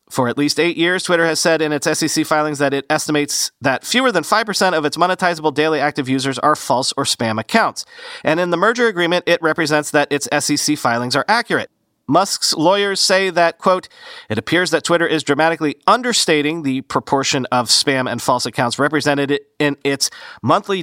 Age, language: 40-59, English